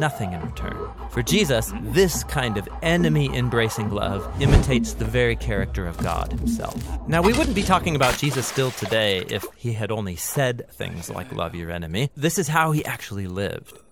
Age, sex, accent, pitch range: 30-49, male, American, 105-155 Hz